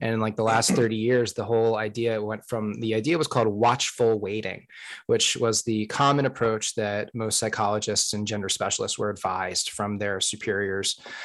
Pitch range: 110-125 Hz